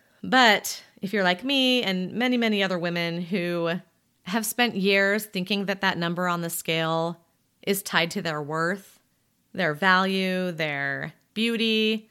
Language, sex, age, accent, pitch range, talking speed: English, female, 30-49, American, 165-210 Hz, 150 wpm